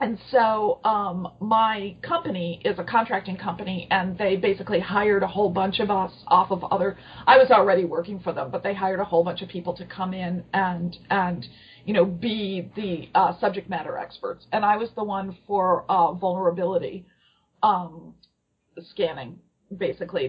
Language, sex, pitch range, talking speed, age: English, female, 180-210 Hz, 175 wpm, 40-59